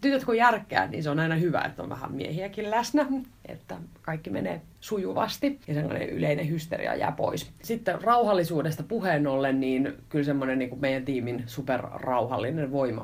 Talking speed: 155 wpm